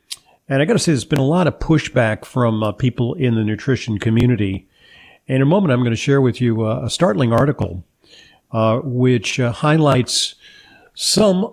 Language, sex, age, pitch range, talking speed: English, male, 50-69, 110-140 Hz, 180 wpm